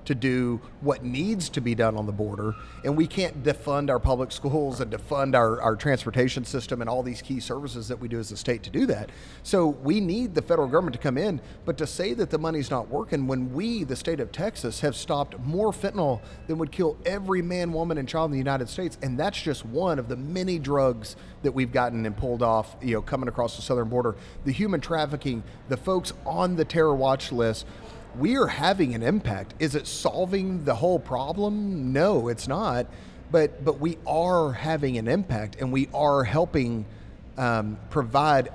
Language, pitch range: English, 120-155 Hz